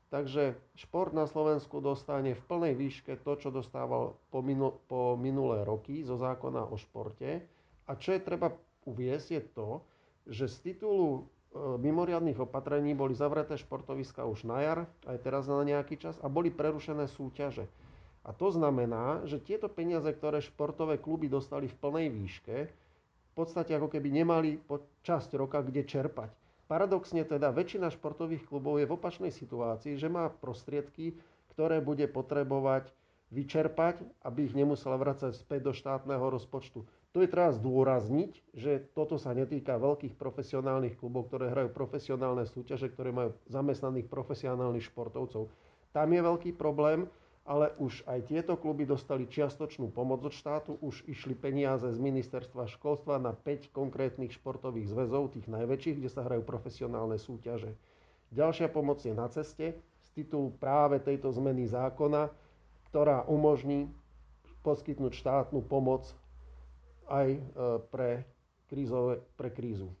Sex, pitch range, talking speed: male, 125-150 Hz, 140 wpm